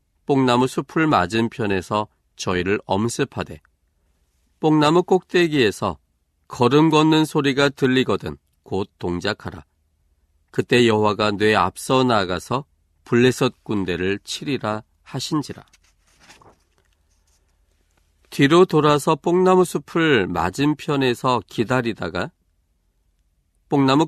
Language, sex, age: Korean, male, 40-59